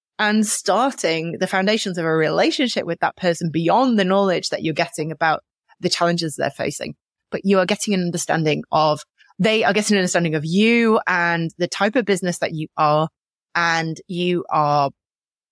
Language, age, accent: English, 30-49, British